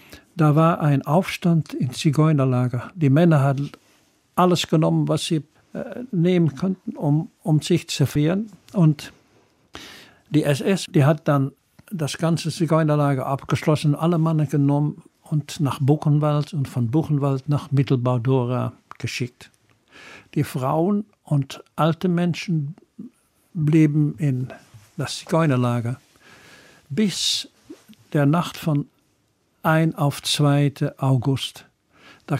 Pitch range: 135-160 Hz